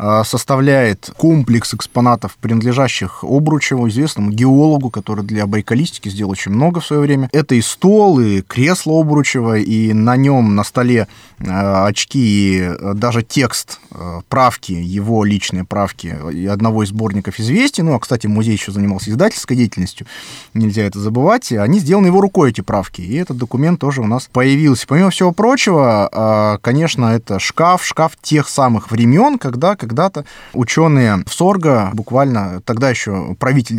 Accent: native